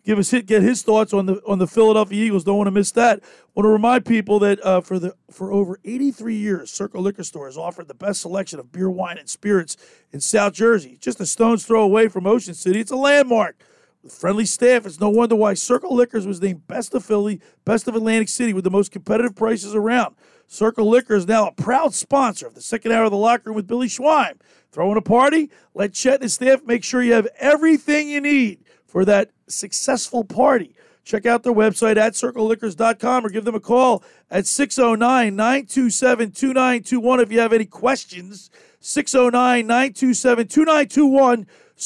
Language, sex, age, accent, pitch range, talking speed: English, male, 40-59, American, 200-250 Hz, 195 wpm